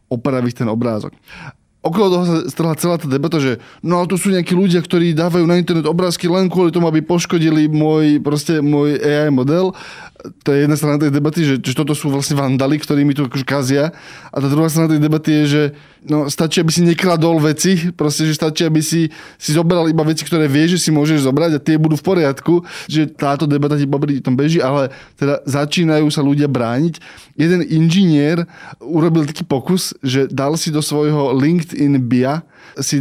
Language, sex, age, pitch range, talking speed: Slovak, male, 20-39, 140-165 Hz, 195 wpm